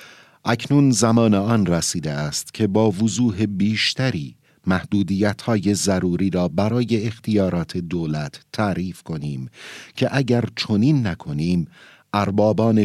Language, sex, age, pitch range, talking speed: Persian, male, 50-69, 95-125 Hz, 105 wpm